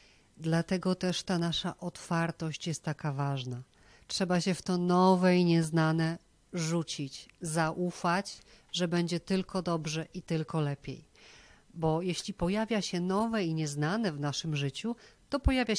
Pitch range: 155-195 Hz